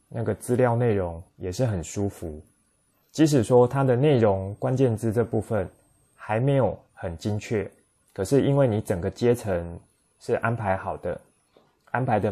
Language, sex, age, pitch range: Chinese, male, 20-39, 95-120 Hz